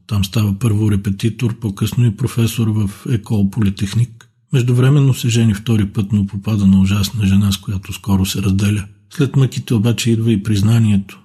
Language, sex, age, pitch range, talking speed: Bulgarian, male, 50-69, 100-115 Hz, 165 wpm